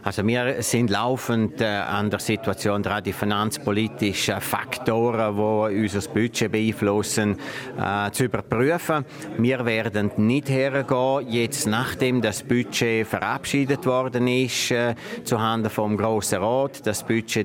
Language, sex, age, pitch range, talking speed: German, male, 50-69, 110-135 Hz, 130 wpm